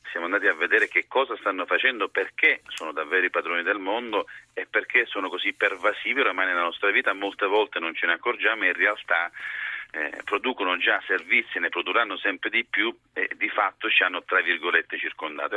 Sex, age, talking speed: male, 40-59, 195 wpm